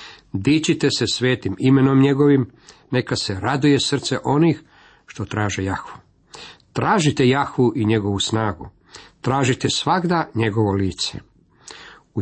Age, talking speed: 50-69, 115 wpm